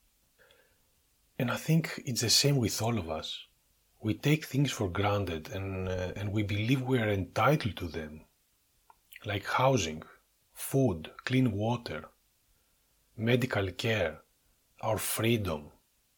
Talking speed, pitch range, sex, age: 125 wpm, 95-130 Hz, male, 30-49